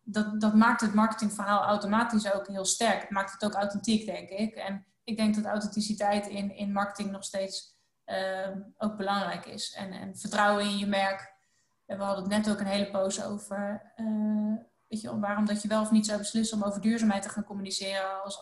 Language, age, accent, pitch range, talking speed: Dutch, 20-39, Dutch, 195-215 Hz, 200 wpm